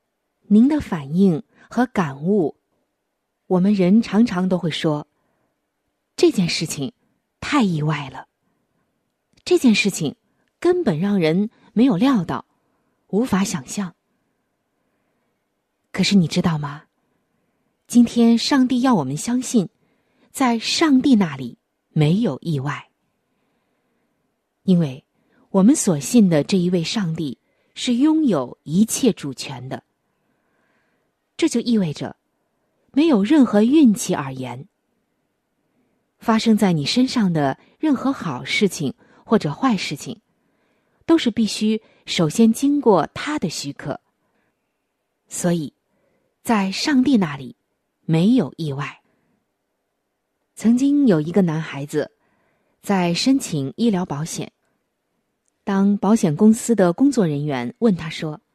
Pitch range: 155-240 Hz